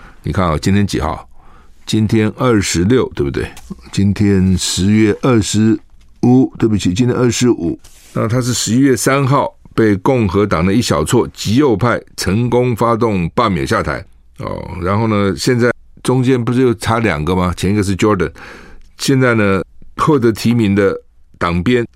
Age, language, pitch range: 50-69, Chinese, 90-120 Hz